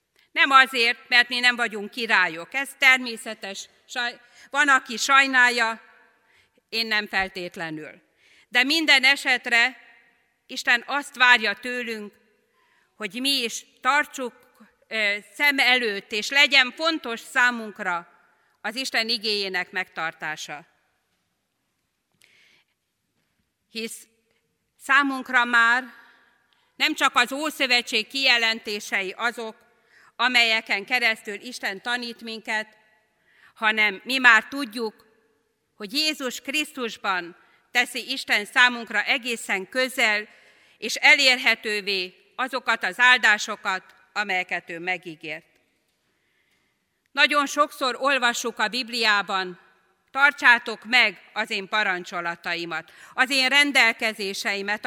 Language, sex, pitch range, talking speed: Hungarian, female, 210-255 Hz, 90 wpm